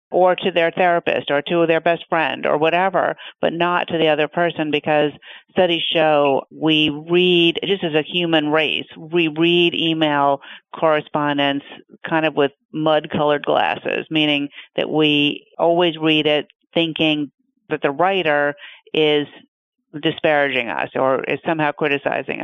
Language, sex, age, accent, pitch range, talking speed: English, female, 50-69, American, 150-180 Hz, 140 wpm